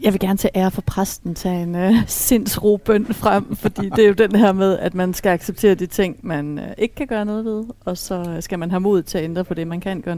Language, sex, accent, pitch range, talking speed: Danish, female, native, 165-195 Hz, 275 wpm